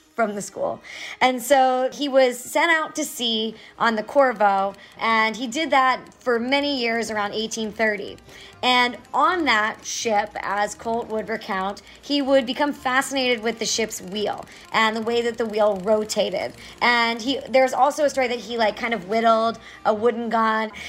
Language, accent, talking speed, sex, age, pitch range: English, American, 175 wpm, male, 30-49, 210-250 Hz